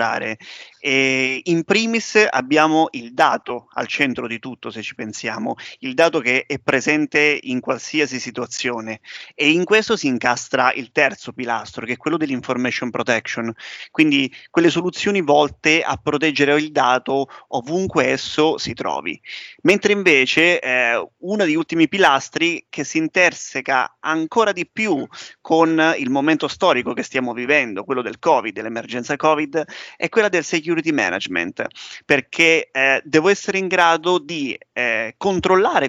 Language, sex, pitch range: Italian, male, 130-175 Hz